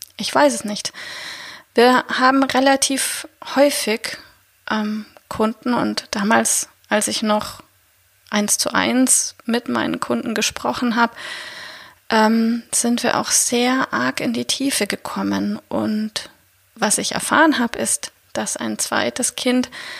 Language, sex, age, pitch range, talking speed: German, female, 30-49, 205-265 Hz, 130 wpm